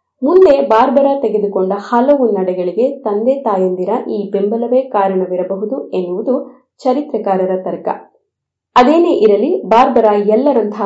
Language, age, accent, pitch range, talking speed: Kannada, 20-39, native, 200-260 Hz, 95 wpm